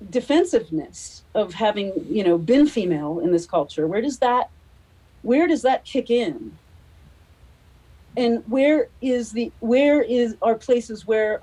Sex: female